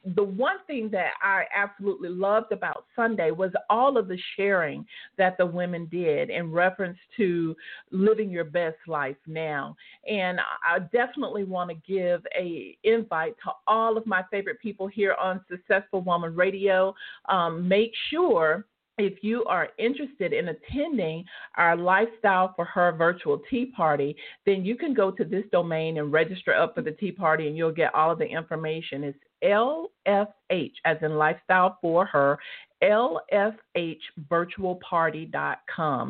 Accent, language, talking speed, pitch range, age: American, English, 150 wpm, 165-215 Hz, 40-59